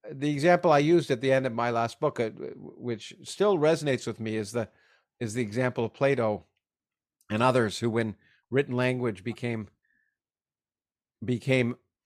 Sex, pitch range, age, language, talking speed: male, 115-150 Hz, 50-69, English, 155 wpm